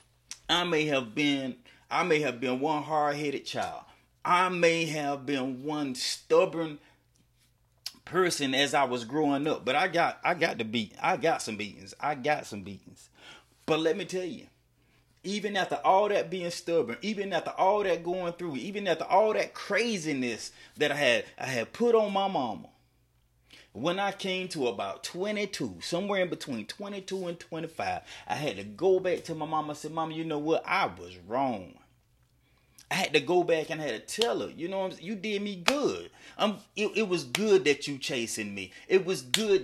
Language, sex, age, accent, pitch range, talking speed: English, male, 30-49, American, 140-190 Hz, 195 wpm